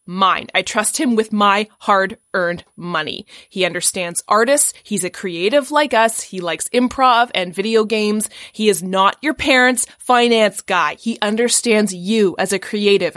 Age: 20-39